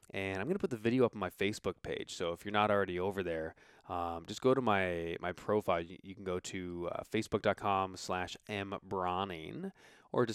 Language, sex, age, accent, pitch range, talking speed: English, male, 20-39, American, 95-130 Hz, 205 wpm